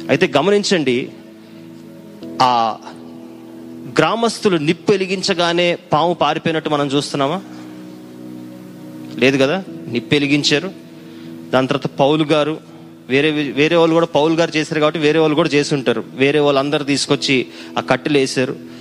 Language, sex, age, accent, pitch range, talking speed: Telugu, male, 30-49, native, 125-165 Hz, 110 wpm